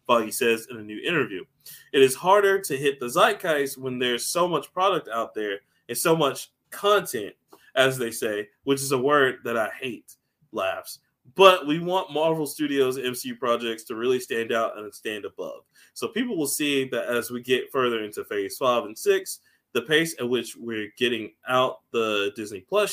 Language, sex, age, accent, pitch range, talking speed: English, male, 20-39, American, 115-160 Hz, 190 wpm